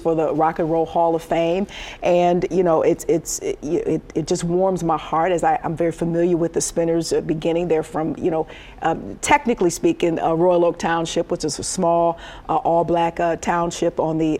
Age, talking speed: 40-59, 215 wpm